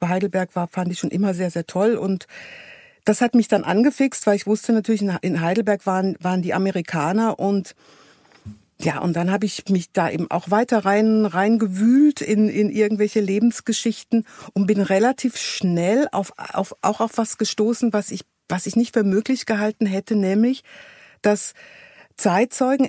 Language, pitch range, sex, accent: German, 180-220 Hz, female, German